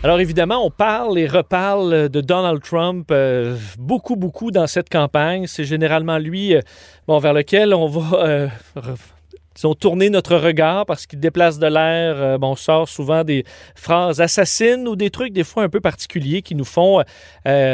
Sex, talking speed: male, 190 wpm